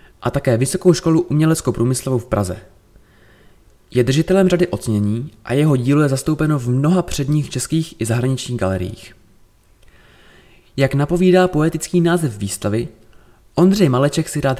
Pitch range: 110-155 Hz